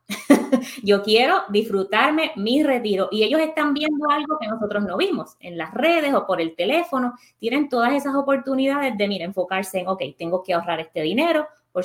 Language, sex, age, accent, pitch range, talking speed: Spanish, female, 20-39, American, 180-265 Hz, 180 wpm